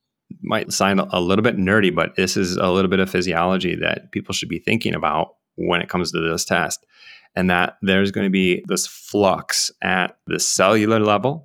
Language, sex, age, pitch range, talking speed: English, male, 30-49, 85-100 Hz, 200 wpm